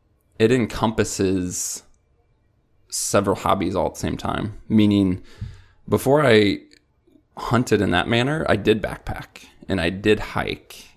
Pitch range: 95-115 Hz